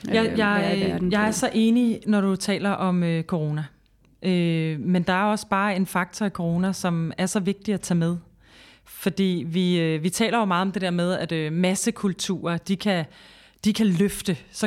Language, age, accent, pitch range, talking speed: Danish, 30-49, native, 160-200 Hz, 205 wpm